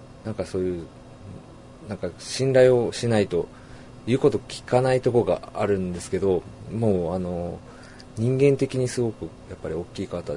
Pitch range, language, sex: 90-130 Hz, Japanese, male